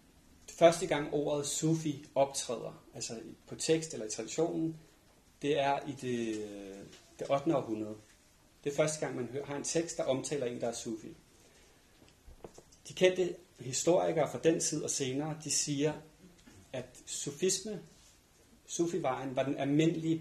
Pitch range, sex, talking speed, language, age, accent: 120-155 Hz, male, 145 wpm, Danish, 30-49, native